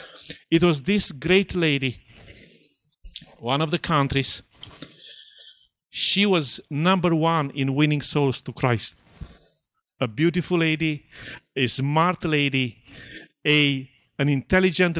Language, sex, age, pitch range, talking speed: English, male, 50-69, 130-160 Hz, 110 wpm